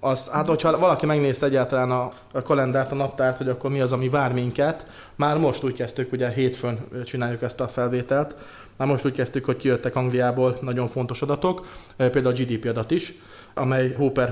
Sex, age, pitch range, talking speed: male, 20-39, 125-140 Hz, 185 wpm